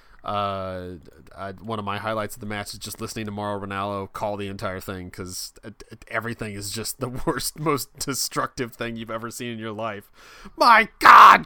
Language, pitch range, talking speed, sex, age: English, 100-140 Hz, 190 wpm, male, 20-39